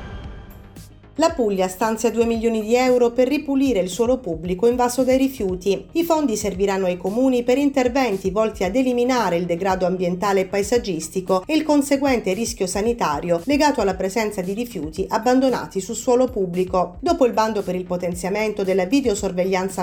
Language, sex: Italian, female